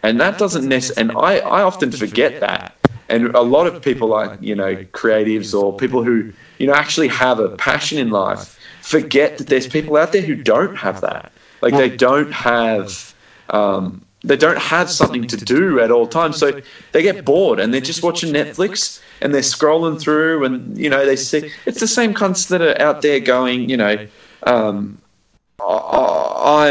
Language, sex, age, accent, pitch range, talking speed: English, male, 20-39, Australian, 115-170 Hz, 195 wpm